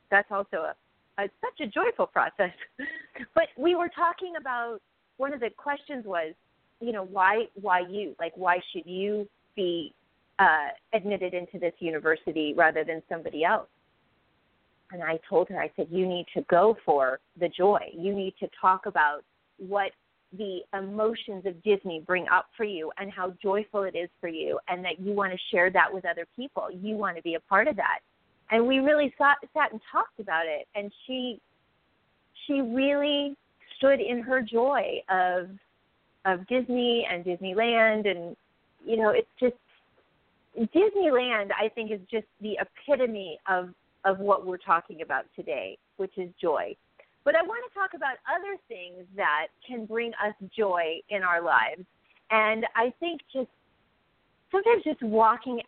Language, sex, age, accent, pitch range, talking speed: English, female, 30-49, American, 180-250 Hz, 170 wpm